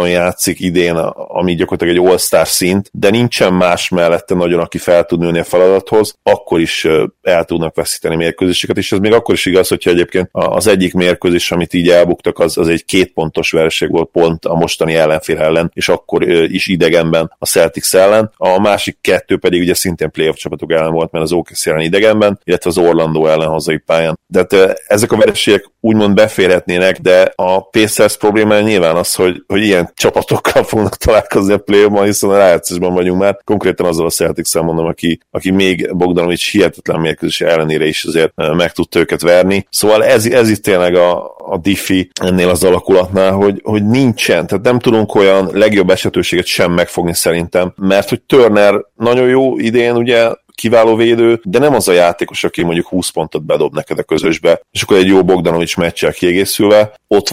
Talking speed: 180 wpm